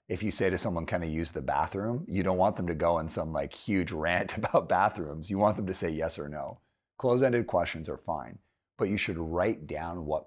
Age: 30-49